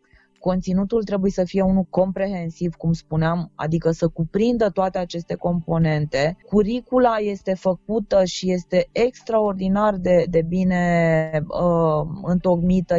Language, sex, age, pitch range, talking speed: Romanian, female, 20-39, 170-200 Hz, 110 wpm